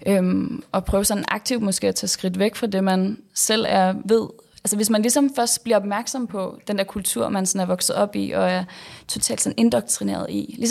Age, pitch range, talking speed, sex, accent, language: 20-39, 180-215 Hz, 220 wpm, female, native, Danish